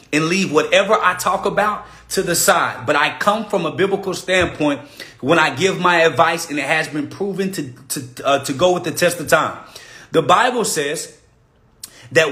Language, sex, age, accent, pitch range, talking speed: English, male, 30-49, American, 170-225 Hz, 195 wpm